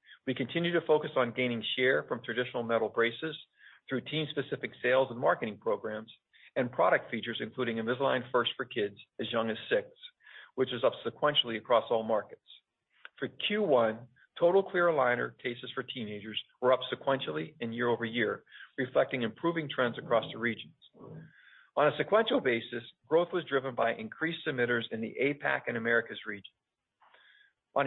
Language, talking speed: English, 155 wpm